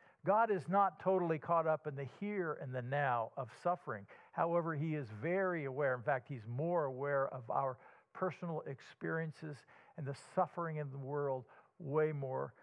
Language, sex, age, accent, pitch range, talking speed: English, male, 50-69, American, 140-180 Hz, 170 wpm